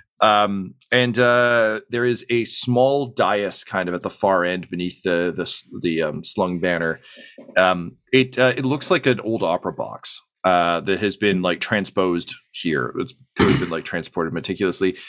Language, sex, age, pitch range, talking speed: English, male, 40-59, 95-130 Hz, 175 wpm